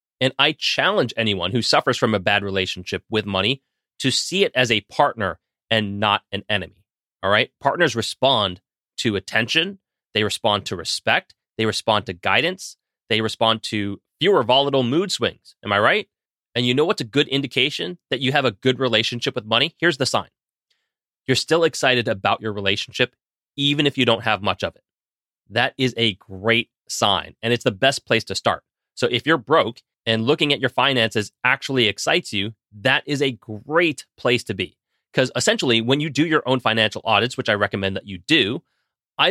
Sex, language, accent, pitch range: male, English, American, 110-140 Hz